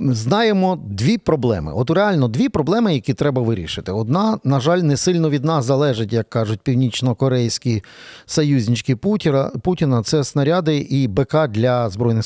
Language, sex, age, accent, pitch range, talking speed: Ukrainian, male, 40-59, native, 115-150 Hz, 140 wpm